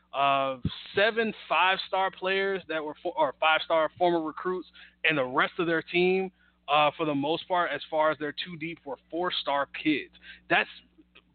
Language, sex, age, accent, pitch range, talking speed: English, male, 20-39, American, 145-180 Hz, 175 wpm